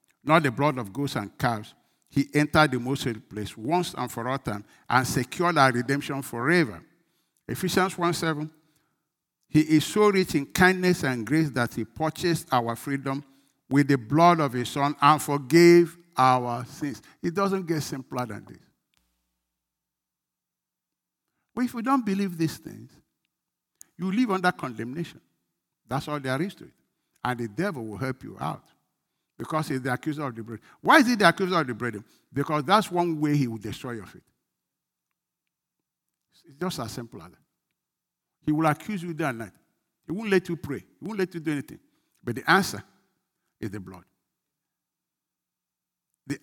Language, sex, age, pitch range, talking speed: English, male, 60-79, 125-170 Hz, 170 wpm